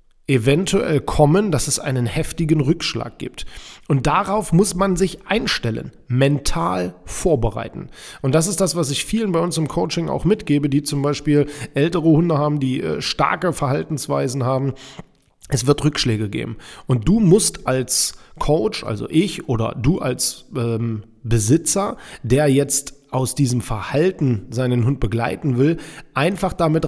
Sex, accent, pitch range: male, German, 130-160 Hz